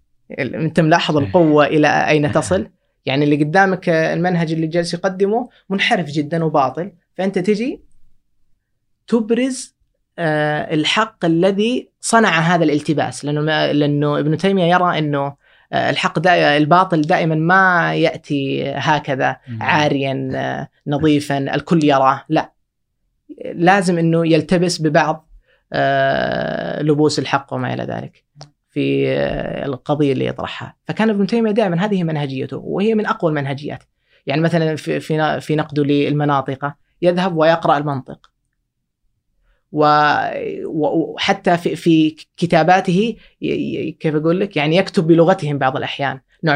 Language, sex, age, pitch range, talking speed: Arabic, female, 20-39, 145-180 Hz, 110 wpm